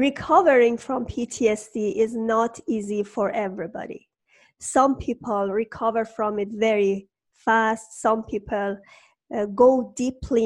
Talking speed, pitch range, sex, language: 115 wpm, 210-245 Hz, female, English